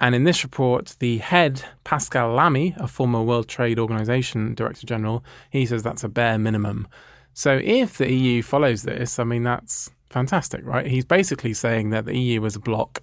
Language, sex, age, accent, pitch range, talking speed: English, male, 20-39, British, 110-130 Hz, 190 wpm